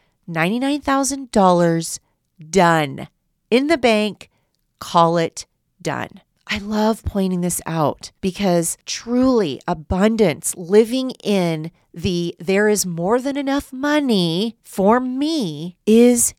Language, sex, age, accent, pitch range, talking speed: English, female, 30-49, American, 175-230 Hz, 100 wpm